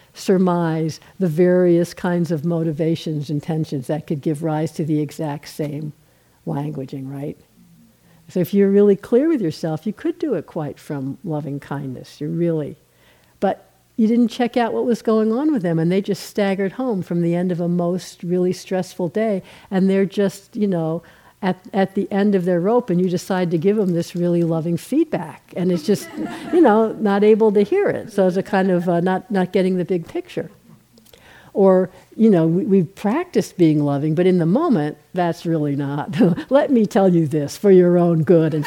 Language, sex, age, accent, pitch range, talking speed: English, female, 60-79, American, 165-210 Hz, 200 wpm